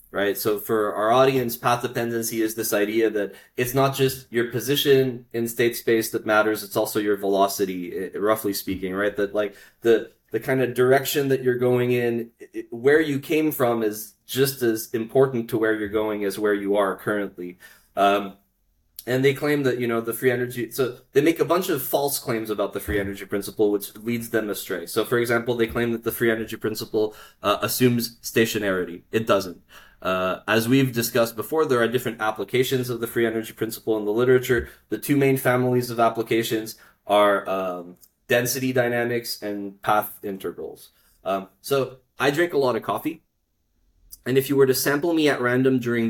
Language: English